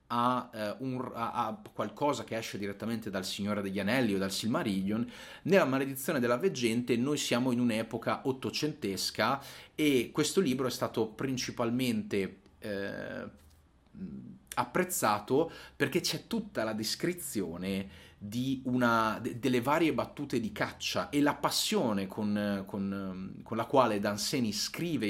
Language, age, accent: Italian, 30-49, native